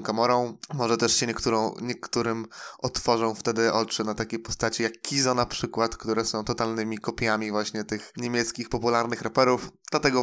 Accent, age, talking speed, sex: native, 20-39, 155 wpm, male